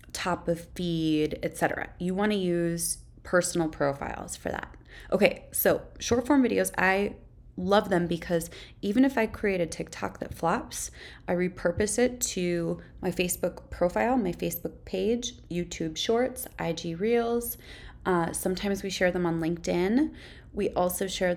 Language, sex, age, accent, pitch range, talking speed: English, female, 20-39, American, 165-195 Hz, 150 wpm